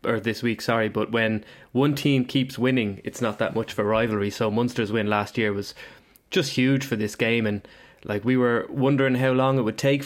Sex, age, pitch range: male, 20-39, 110-130 Hz